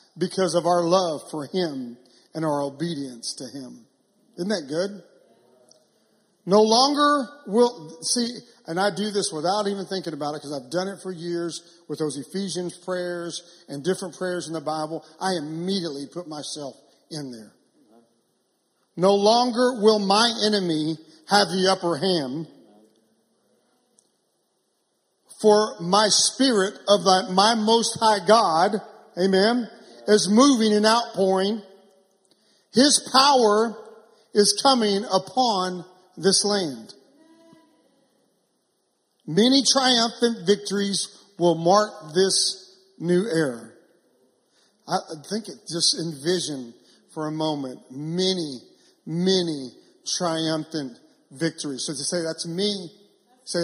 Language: English